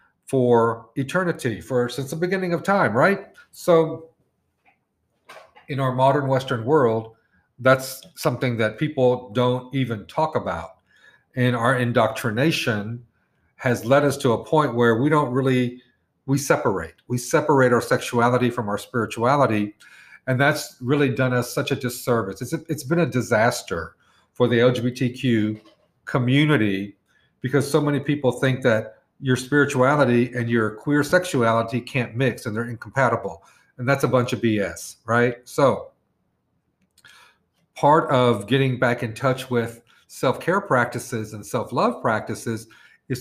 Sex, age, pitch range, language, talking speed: male, 50-69, 120-140 Hz, English, 140 wpm